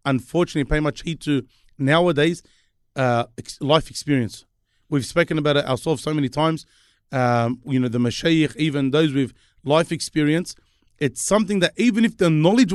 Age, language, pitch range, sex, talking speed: 30-49, English, 140-180 Hz, male, 160 wpm